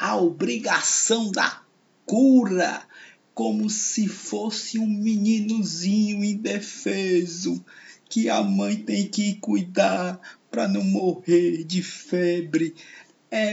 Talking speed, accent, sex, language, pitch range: 100 wpm, Brazilian, male, Portuguese, 180-225 Hz